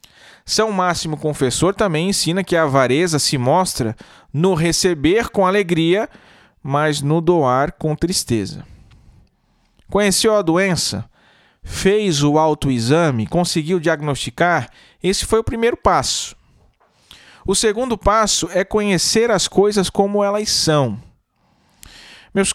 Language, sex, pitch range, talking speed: Portuguese, male, 150-200 Hz, 115 wpm